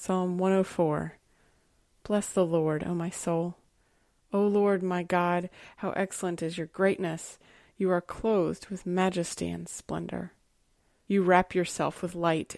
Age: 20-39